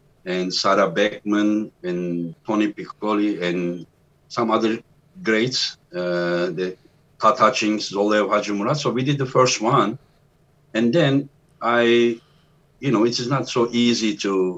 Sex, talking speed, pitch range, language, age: male, 140 wpm, 100-125 Hz, English, 50-69